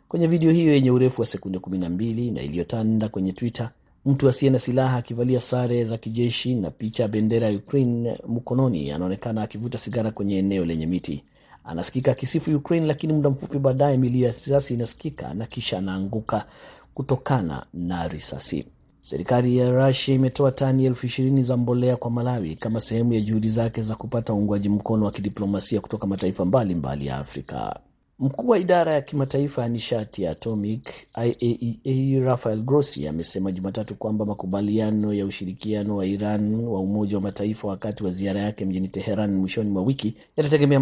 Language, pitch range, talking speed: Swahili, 100-130 Hz, 160 wpm